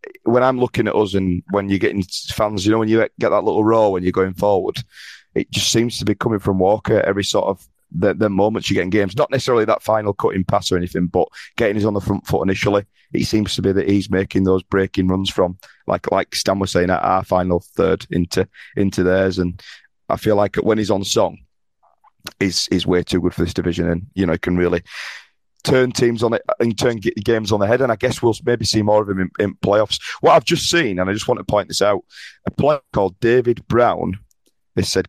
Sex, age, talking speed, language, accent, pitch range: male, 30-49, 245 wpm, English, British, 95-110 Hz